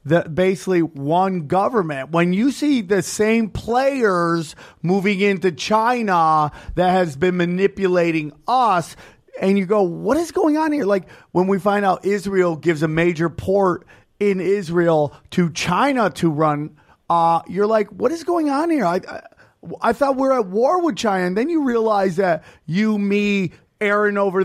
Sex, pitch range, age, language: male, 180-265 Hz, 30-49, English